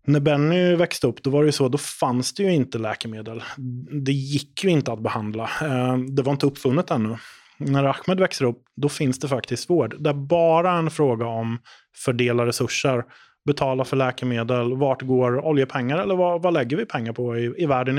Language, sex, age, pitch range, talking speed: English, male, 20-39, 120-145 Hz, 195 wpm